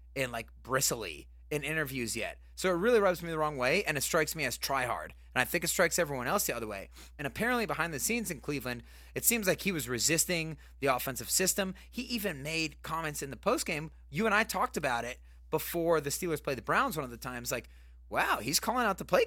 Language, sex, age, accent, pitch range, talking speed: English, male, 30-49, American, 105-160 Hz, 235 wpm